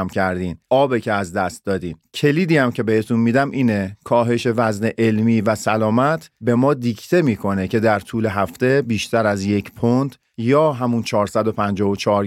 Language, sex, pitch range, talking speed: Persian, male, 105-140 Hz, 150 wpm